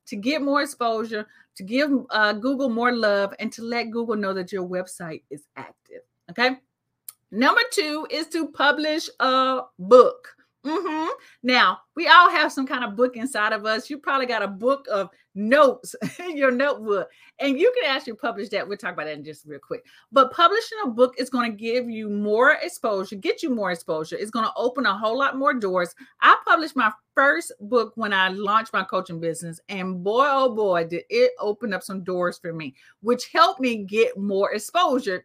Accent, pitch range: American, 205-295 Hz